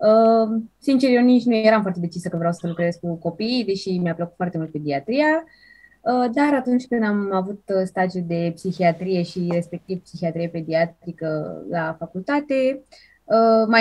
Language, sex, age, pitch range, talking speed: Romanian, female, 20-39, 170-245 Hz, 150 wpm